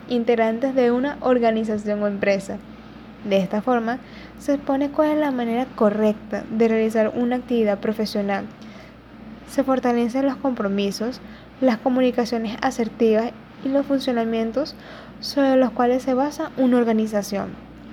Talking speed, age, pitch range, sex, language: 125 wpm, 10-29, 215-255 Hz, female, Spanish